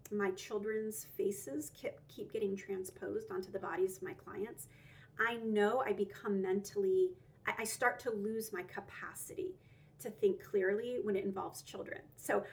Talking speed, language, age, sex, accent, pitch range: 150 wpm, English, 30-49, female, American, 205-330 Hz